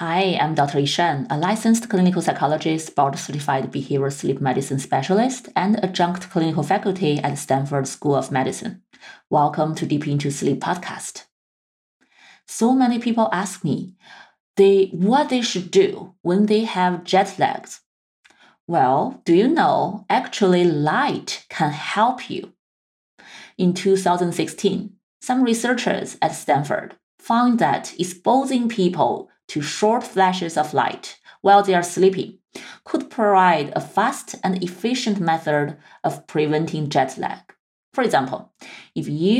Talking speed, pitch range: 130 wpm, 150-200 Hz